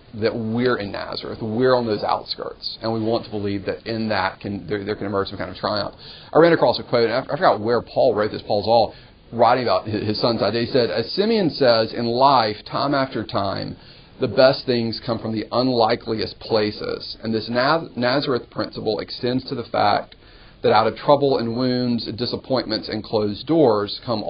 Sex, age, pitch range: male, 40-59, 105-120 Hz